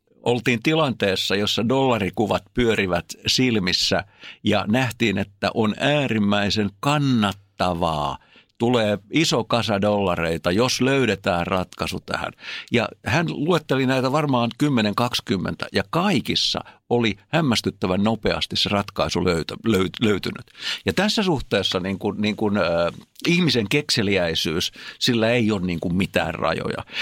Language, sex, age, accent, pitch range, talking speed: Finnish, male, 60-79, native, 100-135 Hz, 100 wpm